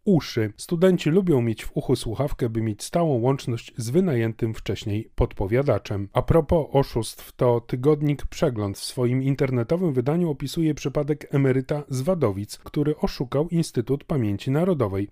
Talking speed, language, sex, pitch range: 140 wpm, Polish, male, 125-155 Hz